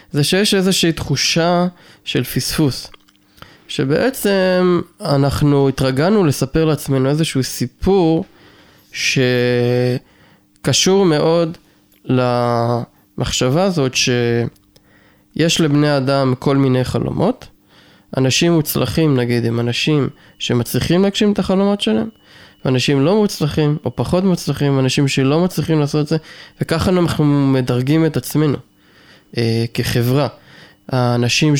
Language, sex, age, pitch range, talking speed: Hebrew, male, 20-39, 125-160 Hz, 100 wpm